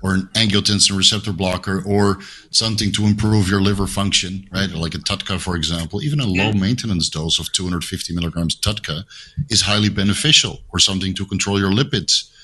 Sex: male